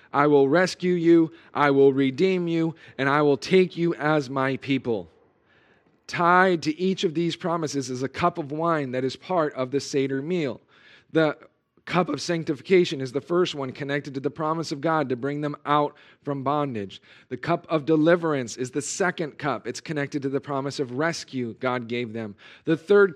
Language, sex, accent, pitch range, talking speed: English, male, American, 135-170 Hz, 190 wpm